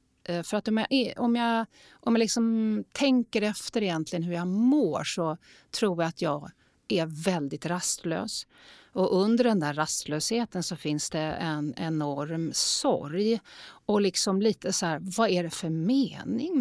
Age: 40-59